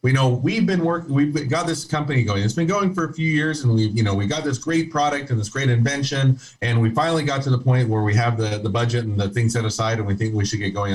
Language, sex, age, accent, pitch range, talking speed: English, male, 40-59, American, 105-135 Hz, 300 wpm